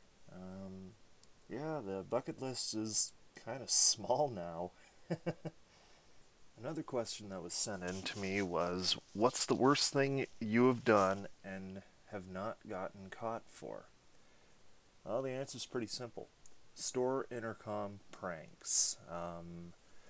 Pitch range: 95-125 Hz